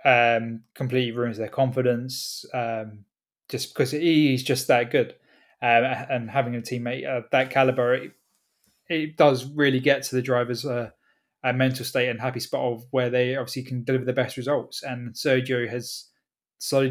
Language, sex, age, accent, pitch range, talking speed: English, male, 20-39, British, 120-130 Hz, 165 wpm